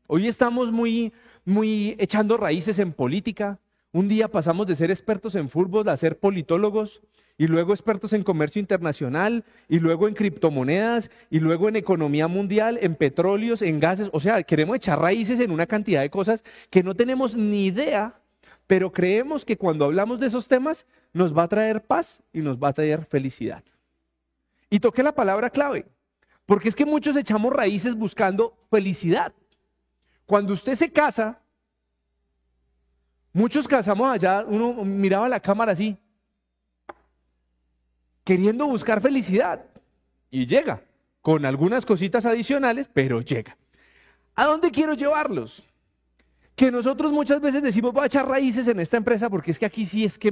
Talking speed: 155 wpm